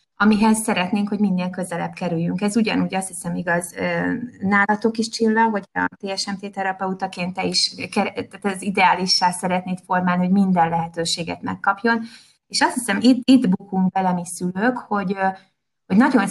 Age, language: 20-39, Hungarian